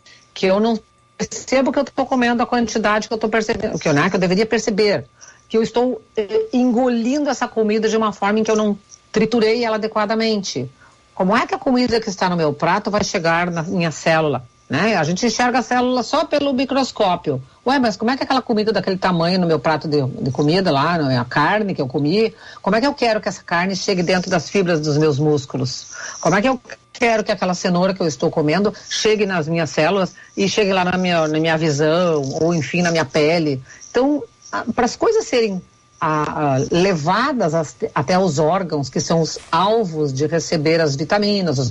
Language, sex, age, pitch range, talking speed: Portuguese, female, 50-69, 160-220 Hz, 210 wpm